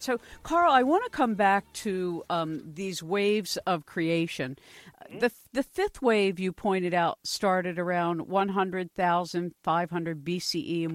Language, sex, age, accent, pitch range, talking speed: English, female, 50-69, American, 170-205 Hz, 135 wpm